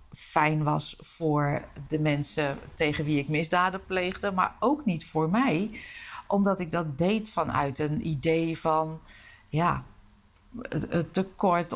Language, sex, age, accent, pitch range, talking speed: Dutch, female, 50-69, Dutch, 155-200 Hz, 130 wpm